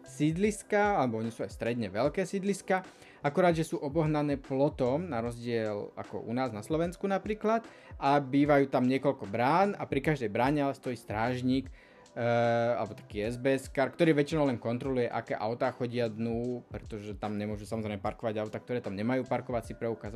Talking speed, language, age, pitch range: 165 wpm, Slovak, 20-39, 115-150 Hz